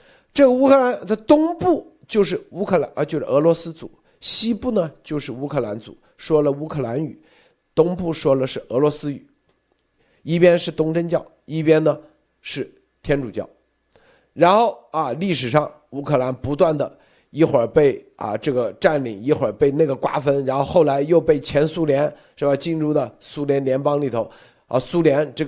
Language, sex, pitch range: Chinese, male, 140-185 Hz